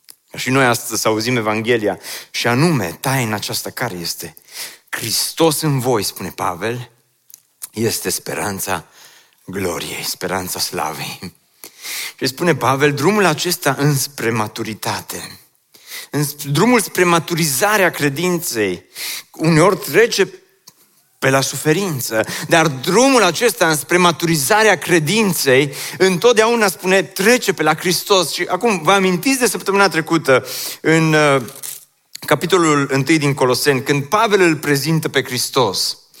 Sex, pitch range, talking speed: male, 145-210 Hz, 115 wpm